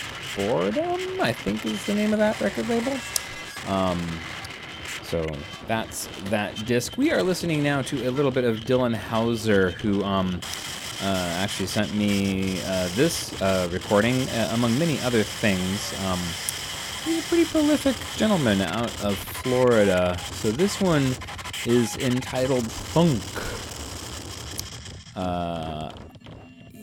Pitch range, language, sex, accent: 95-135 Hz, English, male, American